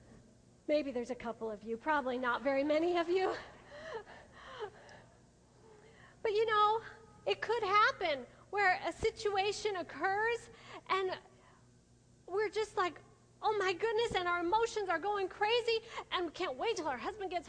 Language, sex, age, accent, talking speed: English, female, 40-59, American, 150 wpm